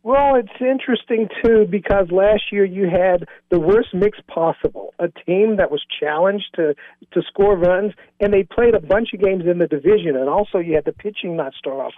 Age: 50-69